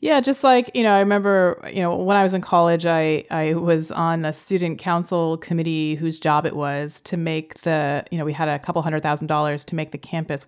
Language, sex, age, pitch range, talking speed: English, female, 30-49, 160-190 Hz, 240 wpm